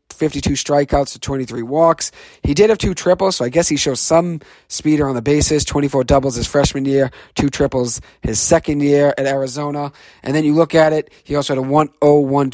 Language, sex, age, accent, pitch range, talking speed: English, male, 40-59, American, 130-155 Hz, 205 wpm